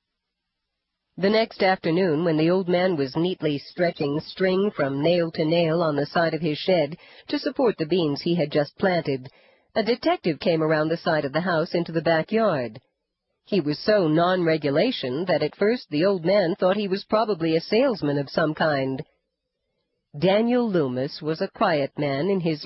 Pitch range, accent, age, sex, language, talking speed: 150-195 Hz, American, 50-69, female, English, 180 wpm